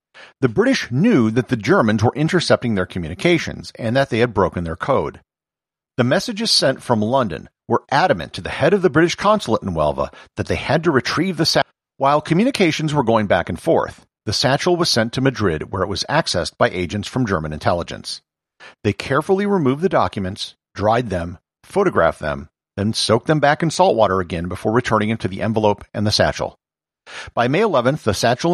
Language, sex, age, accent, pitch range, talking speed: English, male, 50-69, American, 95-145 Hz, 195 wpm